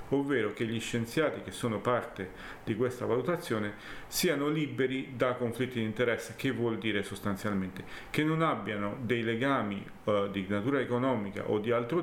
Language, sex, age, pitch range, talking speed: Italian, male, 40-59, 100-130 Hz, 160 wpm